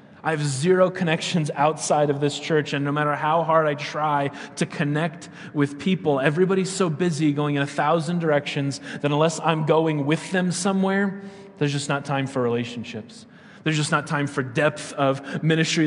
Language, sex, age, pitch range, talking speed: English, male, 30-49, 145-170 Hz, 180 wpm